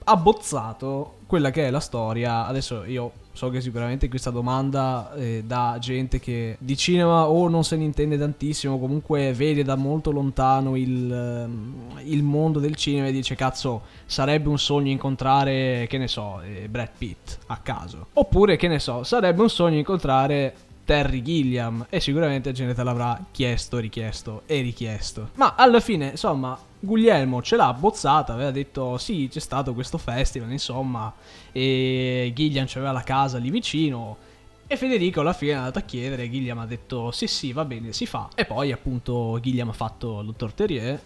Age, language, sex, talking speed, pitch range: 20-39, Italian, male, 170 wpm, 120-145 Hz